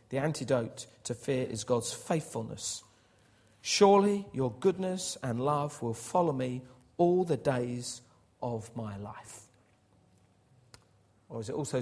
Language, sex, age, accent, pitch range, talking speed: English, male, 40-59, British, 110-140 Hz, 125 wpm